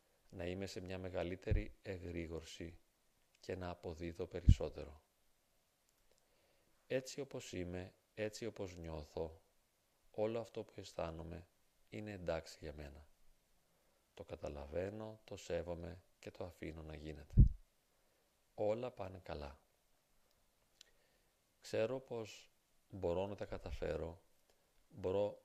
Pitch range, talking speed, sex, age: 80-100 Hz, 100 wpm, male, 40-59